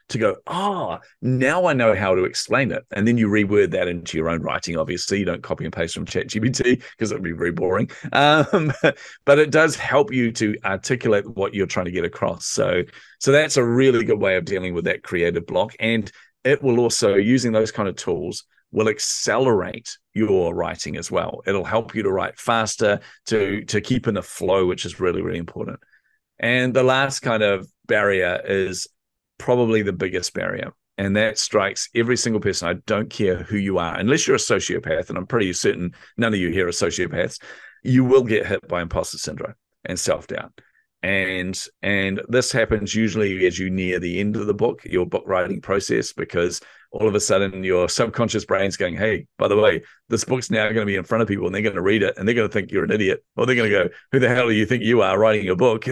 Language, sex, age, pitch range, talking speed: English, male, 40-59, 95-125 Hz, 220 wpm